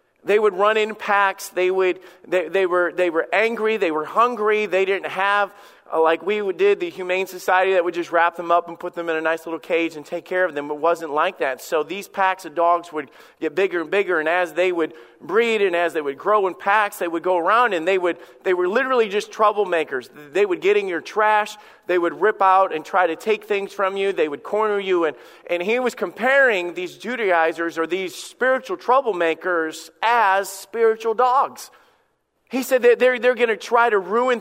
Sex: male